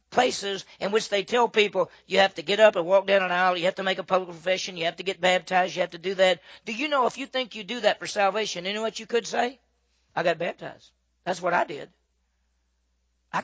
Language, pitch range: English, 160-200 Hz